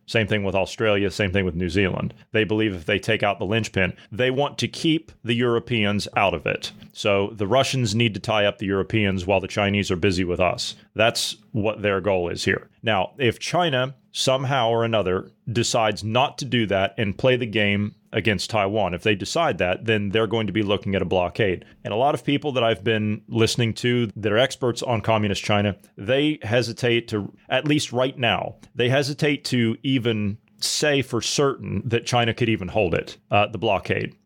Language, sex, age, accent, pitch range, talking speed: English, male, 30-49, American, 105-130 Hz, 205 wpm